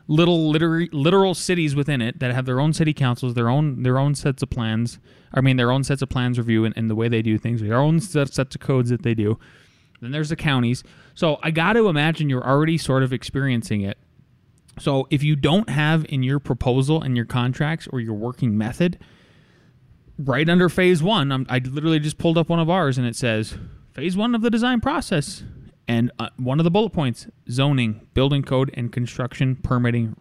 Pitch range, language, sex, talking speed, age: 120-155 Hz, English, male, 205 wpm, 20-39